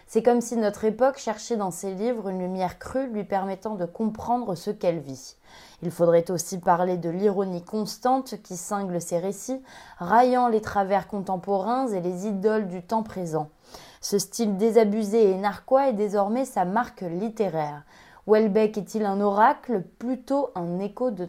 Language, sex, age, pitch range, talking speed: French, female, 20-39, 185-230 Hz, 165 wpm